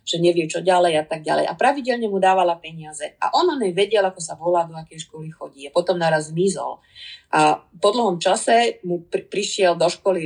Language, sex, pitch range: Slovak, female, 170-205 Hz